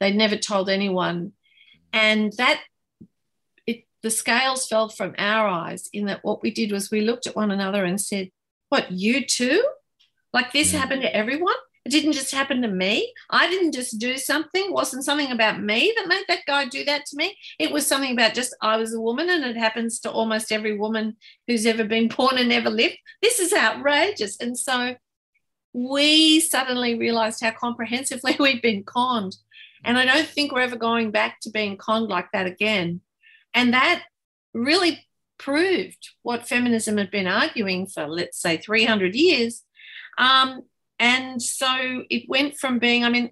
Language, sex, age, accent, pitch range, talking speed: English, female, 50-69, Australian, 215-265 Hz, 180 wpm